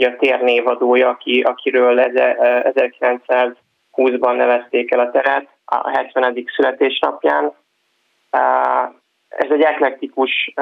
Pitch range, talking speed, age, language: 125-135 Hz, 80 wpm, 20-39, Hungarian